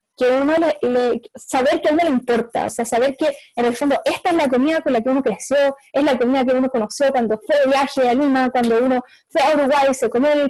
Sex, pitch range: female, 235-300 Hz